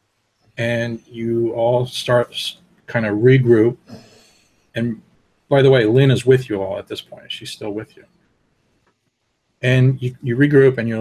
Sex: male